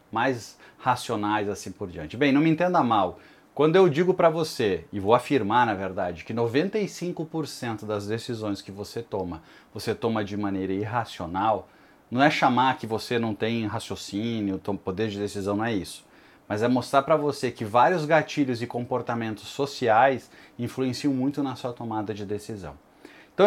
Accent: Brazilian